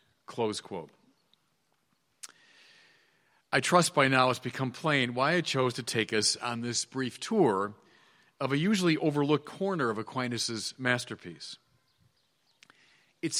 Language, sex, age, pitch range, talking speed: English, male, 40-59, 135-175 Hz, 115 wpm